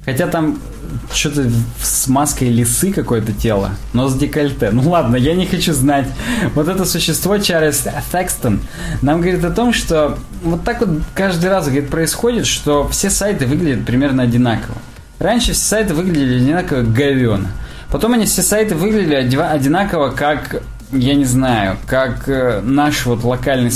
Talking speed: 150 wpm